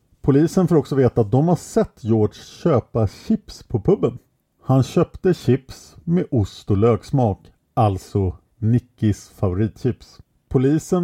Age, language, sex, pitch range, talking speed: 50-69, English, male, 110-155 Hz, 130 wpm